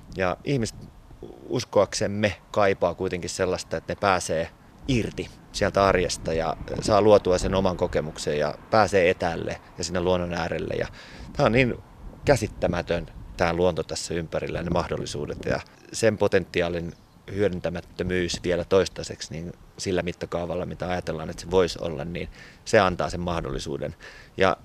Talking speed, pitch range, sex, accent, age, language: 140 wpm, 85-90 Hz, male, native, 30-49, Finnish